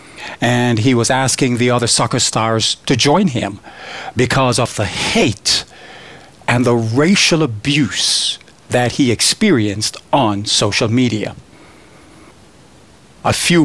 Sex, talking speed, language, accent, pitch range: male, 120 wpm, English, American, 115-150 Hz